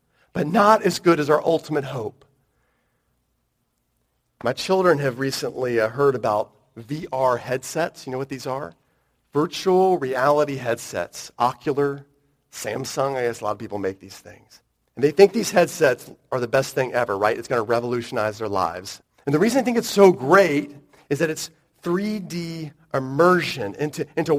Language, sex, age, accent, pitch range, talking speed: English, male, 40-59, American, 125-175 Hz, 165 wpm